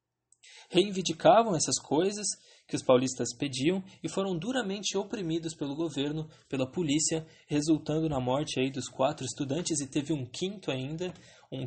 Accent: Brazilian